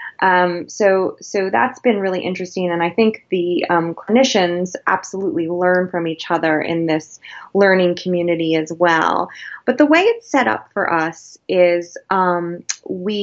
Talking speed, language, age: 160 wpm, English, 20-39